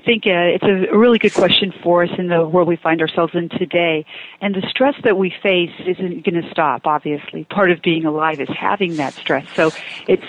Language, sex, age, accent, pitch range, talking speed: English, female, 40-59, American, 160-190 Hz, 220 wpm